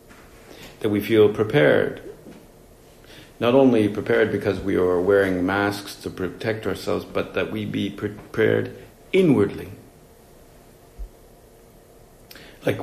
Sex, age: male, 50-69